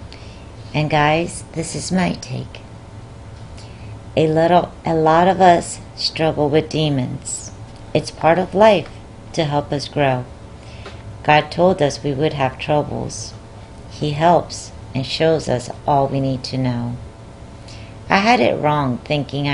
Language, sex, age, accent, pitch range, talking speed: English, female, 50-69, American, 110-150 Hz, 140 wpm